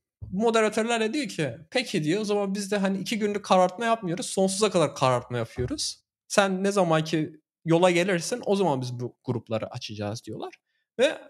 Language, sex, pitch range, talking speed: Turkish, male, 120-175 Hz, 170 wpm